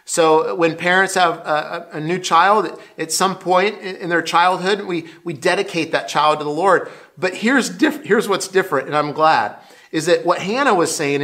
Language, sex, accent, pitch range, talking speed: English, male, American, 160-200 Hz, 200 wpm